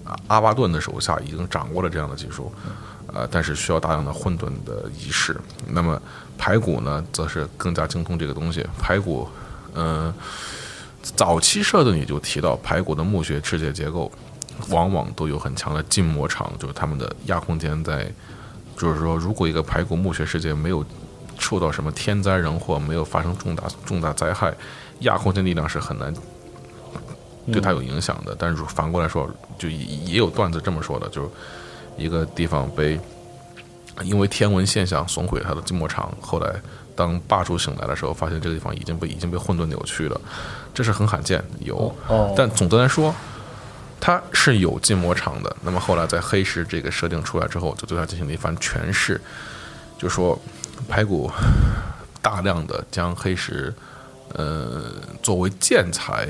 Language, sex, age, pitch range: Chinese, male, 20-39, 80-100 Hz